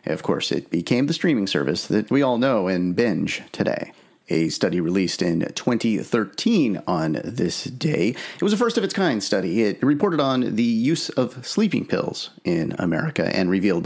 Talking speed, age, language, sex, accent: 170 wpm, 30-49, English, male, American